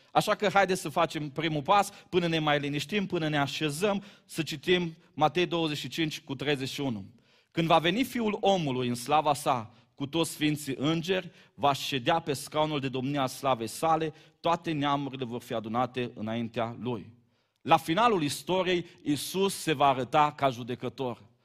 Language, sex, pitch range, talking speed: Romanian, male, 145-200 Hz, 155 wpm